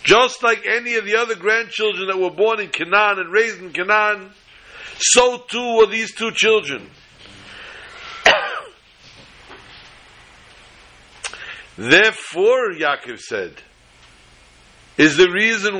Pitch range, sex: 185-230 Hz, male